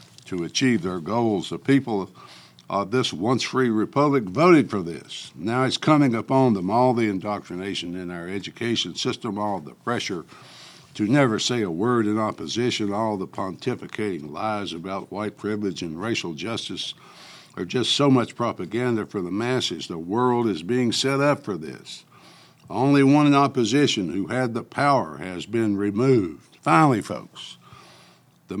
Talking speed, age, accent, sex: 160 wpm, 60-79, American, male